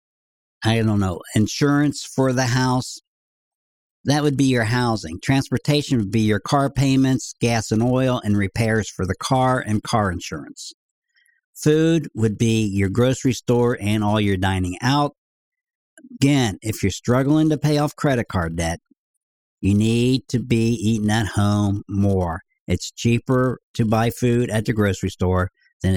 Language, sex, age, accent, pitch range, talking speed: English, male, 50-69, American, 105-145 Hz, 155 wpm